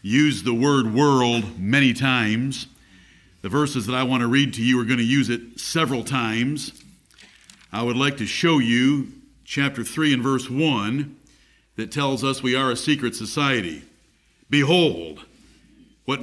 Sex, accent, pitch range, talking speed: male, American, 125-155 Hz, 160 wpm